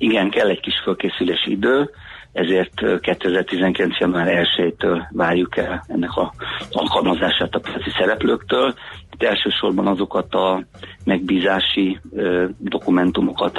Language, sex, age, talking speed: Hungarian, male, 50-69, 105 wpm